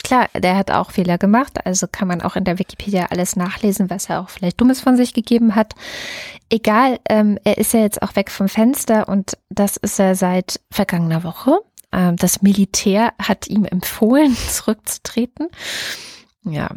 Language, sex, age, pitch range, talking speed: German, female, 20-39, 175-225 Hz, 175 wpm